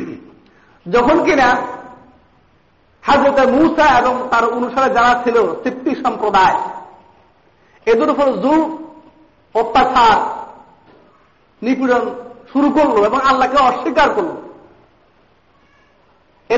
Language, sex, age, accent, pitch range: Bengali, male, 50-69, native, 250-315 Hz